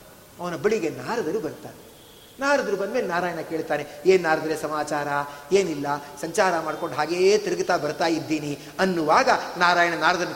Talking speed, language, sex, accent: 125 wpm, Kannada, male, native